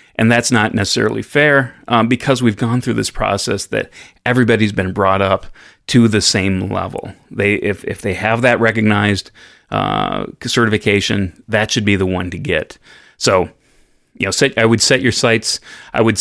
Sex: male